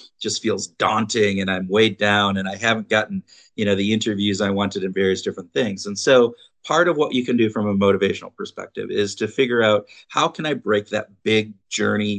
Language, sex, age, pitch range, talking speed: English, male, 50-69, 100-125 Hz, 215 wpm